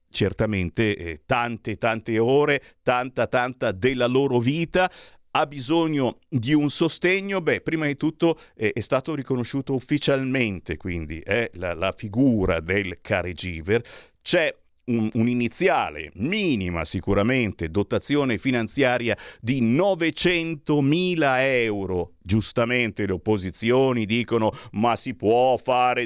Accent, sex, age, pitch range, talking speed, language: native, male, 50-69, 100-145 Hz, 115 wpm, Italian